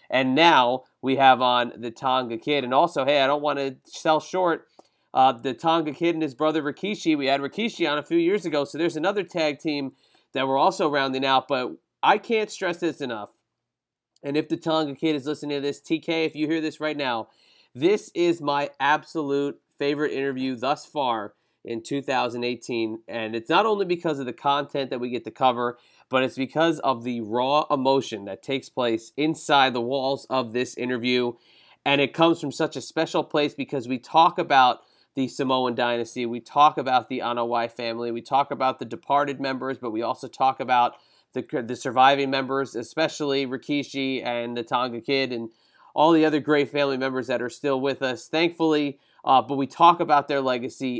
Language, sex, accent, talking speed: English, male, American, 195 wpm